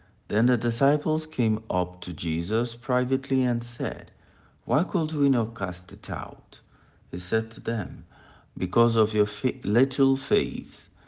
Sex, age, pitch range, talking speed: male, 60-79, 90-125 Hz, 140 wpm